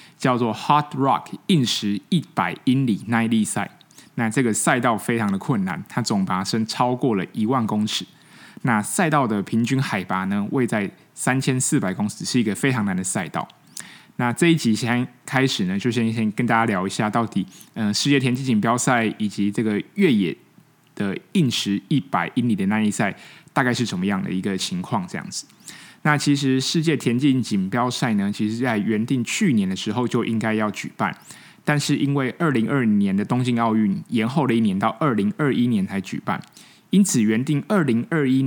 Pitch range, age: 110-155 Hz, 20-39